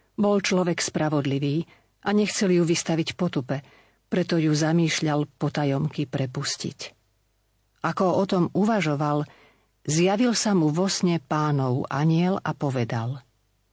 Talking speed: 115 wpm